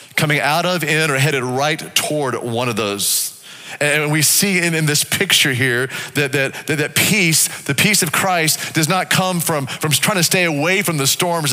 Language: English